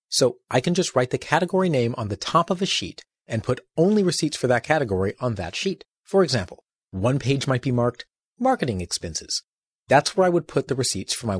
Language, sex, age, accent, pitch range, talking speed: English, male, 40-59, American, 110-170 Hz, 220 wpm